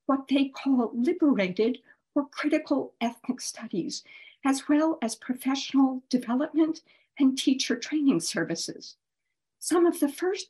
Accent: American